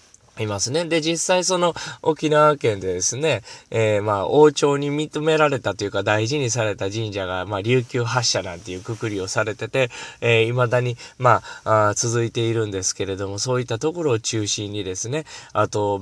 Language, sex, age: Japanese, male, 20-39